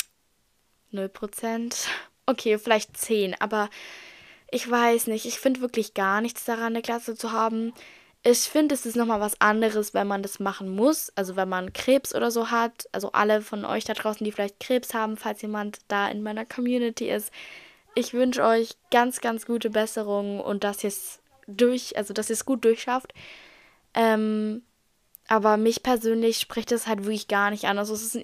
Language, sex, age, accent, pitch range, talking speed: German, female, 10-29, German, 215-255 Hz, 180 wpm